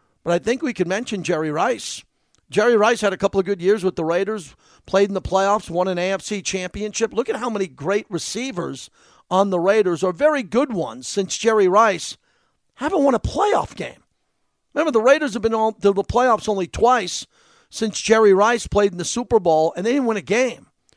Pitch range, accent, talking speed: 160-210 Hz, American, 205 wpm